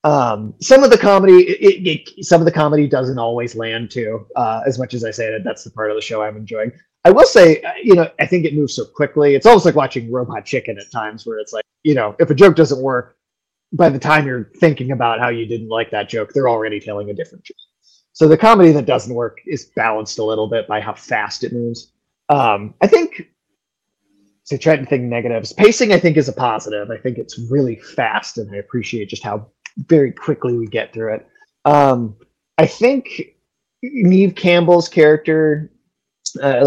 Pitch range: 115-170 Hz